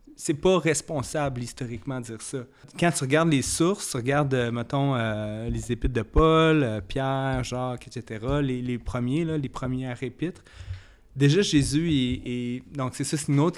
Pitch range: 125-150 Hz